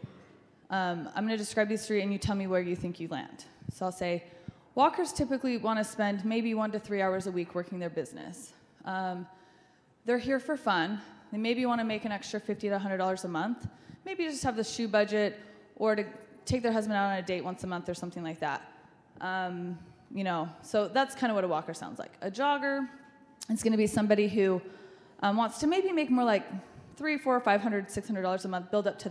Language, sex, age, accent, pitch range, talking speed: English, female, 20-39, American, 190-245 Hz, 220 wpm